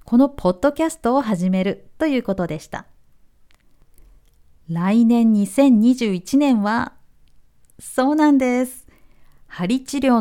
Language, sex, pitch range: Japanese, female, 175-275 Hz